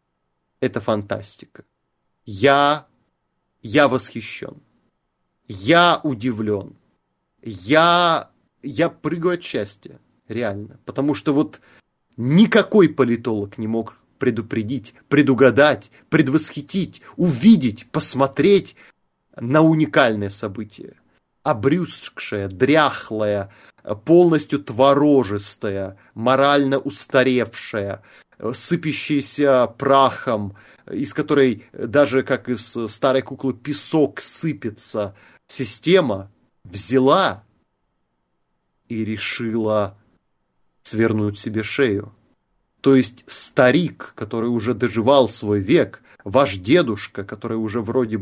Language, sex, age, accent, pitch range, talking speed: Russian, male, 30-49, native, 110-145 Hz, 80 wpm